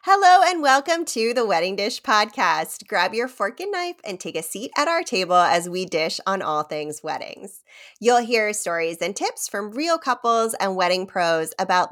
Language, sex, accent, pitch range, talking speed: English, female, American, 180-245 Hz, 195 wpm